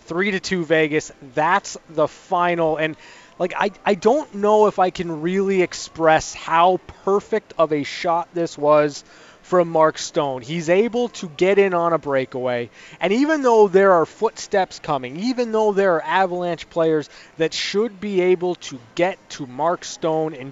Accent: American